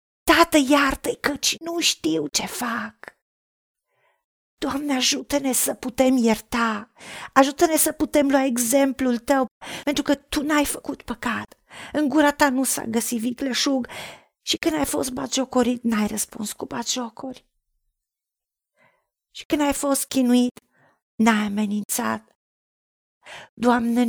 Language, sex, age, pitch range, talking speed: Romanian, female, 40-59, 235-280 Hz, 120 wpm